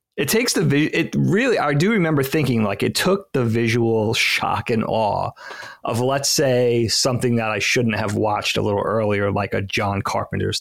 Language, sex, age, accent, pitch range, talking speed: English, male, 30-49, American, 110-135 Hz, 185 wpm